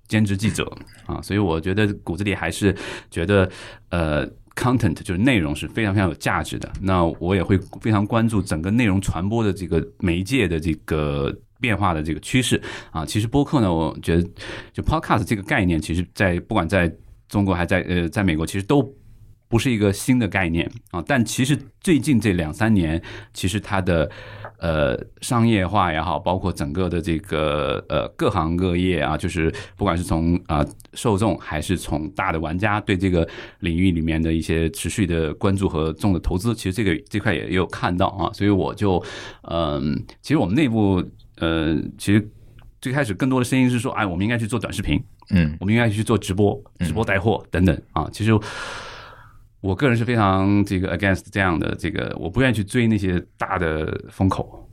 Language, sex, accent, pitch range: Chinese, male, native, 85-110 Hz